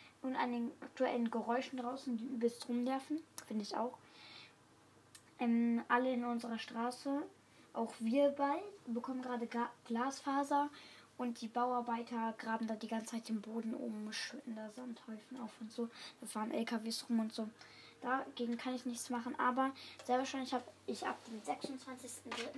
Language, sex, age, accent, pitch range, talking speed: German, female, 10-29, German, 230-275 Hz, 160 wpm